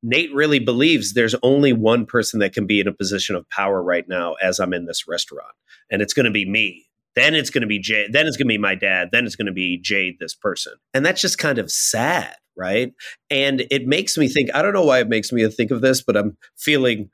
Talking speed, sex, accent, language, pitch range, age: 245 wpm, male, American, English, 100-125 Hz, 30-49